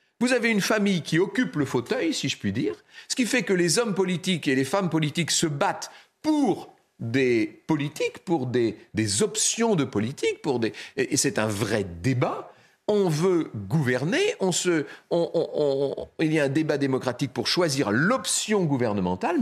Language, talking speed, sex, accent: French, 180 wpm, male, French